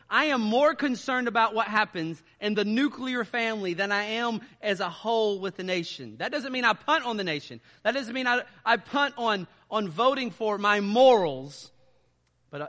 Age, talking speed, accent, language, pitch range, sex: 40-59, 195 wpm, American, English, 160-225 Hz, male